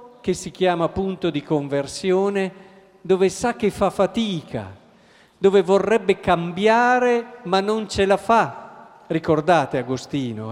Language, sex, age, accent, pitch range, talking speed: Italian, male, 50-69, native, 145-195 Hz, 120 wpm